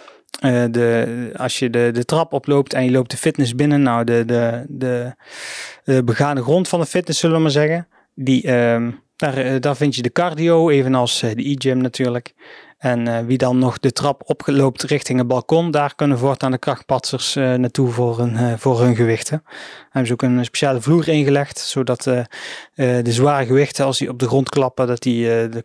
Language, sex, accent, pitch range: Dutch, male, Dutch, 125-145 Hz